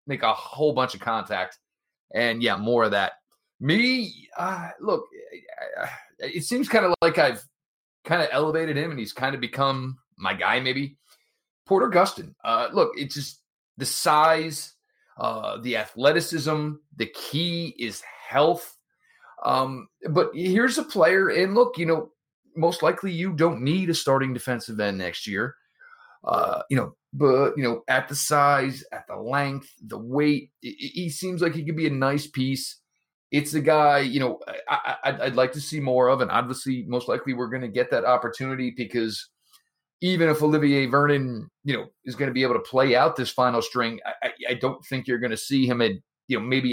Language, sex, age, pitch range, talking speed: English, male, 30-49, 125-160 Hz, 185 wpm